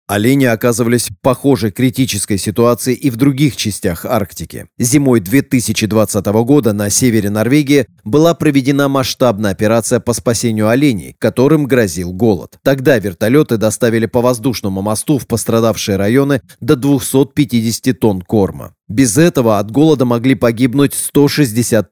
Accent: native